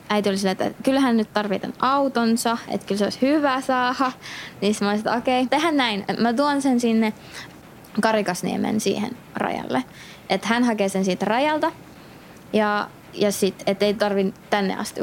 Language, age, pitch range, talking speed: Finnish, 20-39, 195-230 Hz, 170 wpm